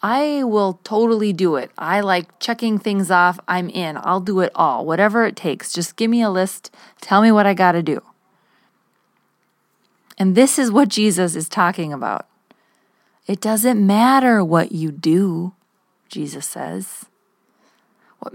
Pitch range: 185-230 Hz